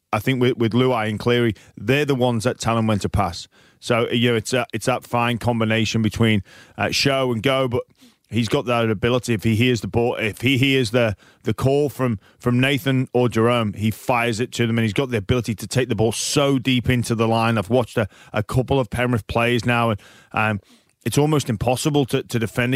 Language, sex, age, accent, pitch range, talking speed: English, male, 30-49, British, 115-130 Hz, 225 wpm